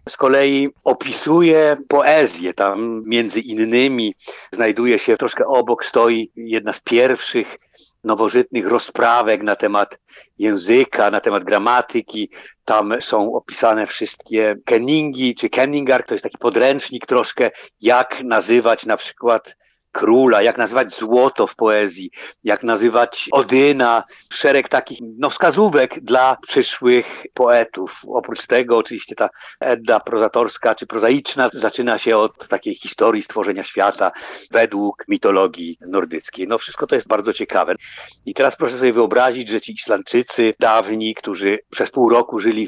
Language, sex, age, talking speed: Polish, male, 50-69, 130 wpm